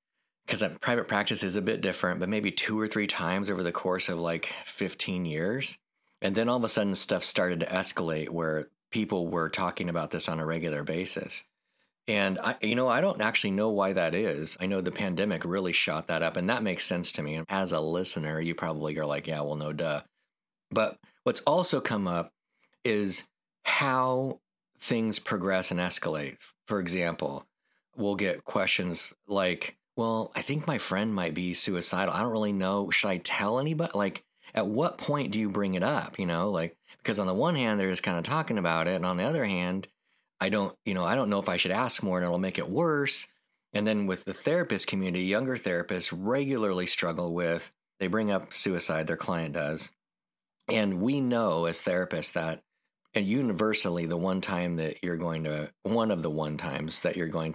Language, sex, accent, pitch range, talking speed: English, male, American, 85-105 Hz, 205 wpm